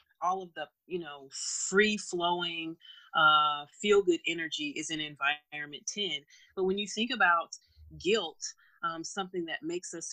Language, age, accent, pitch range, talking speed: English, 30-49, American, 155-200 Hz, 155 wpm